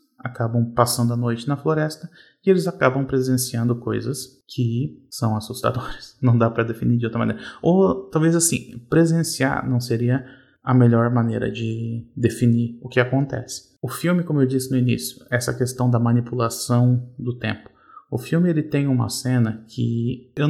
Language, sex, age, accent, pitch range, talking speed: Portuguese, male, 20-39, Brazilian, 120-135 Hz, 165 wpm